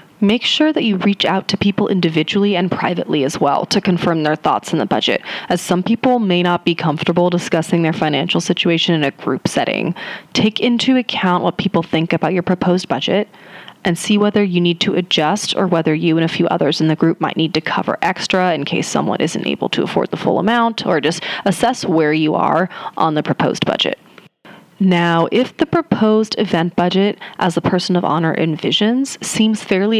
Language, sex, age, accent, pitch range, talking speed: English, female, 30-49, American, 165-205 Hz, 200 wpm